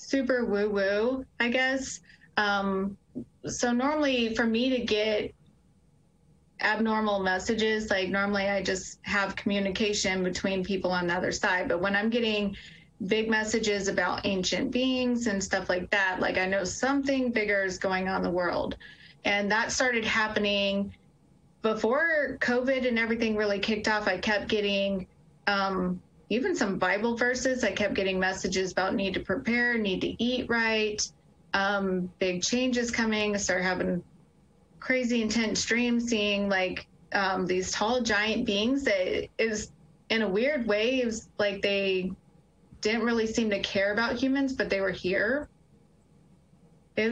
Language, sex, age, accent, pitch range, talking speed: English, female, 30-49, American, 195-235 Hz, 150 wpm